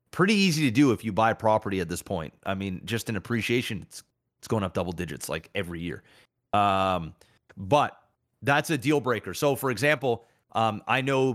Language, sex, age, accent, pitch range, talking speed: English, male, 30-49, American, 110-140 Hz, 200 wpm